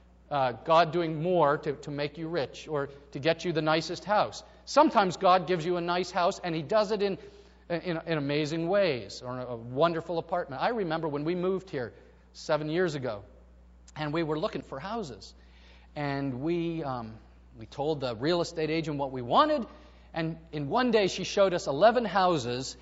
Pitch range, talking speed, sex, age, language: 130-215 Hz, 190 wpm, male, 40-59, English